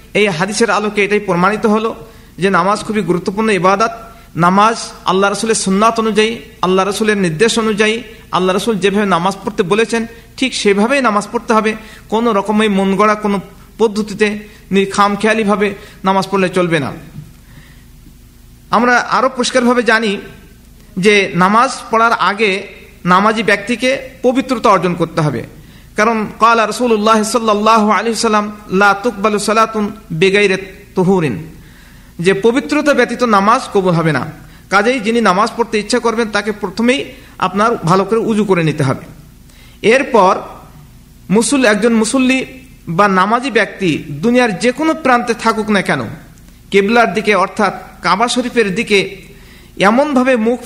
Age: 50-69